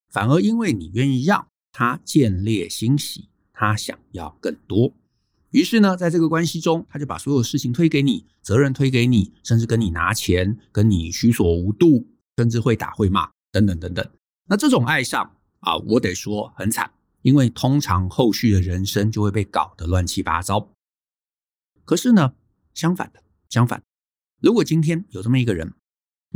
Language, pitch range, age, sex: Chinese, 100-145 Hz, 50-69, male